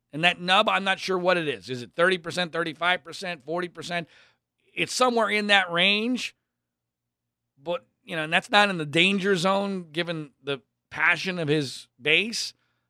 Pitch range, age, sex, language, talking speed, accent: 120-185 Hz, 40-59, male, English, 165 wpm, American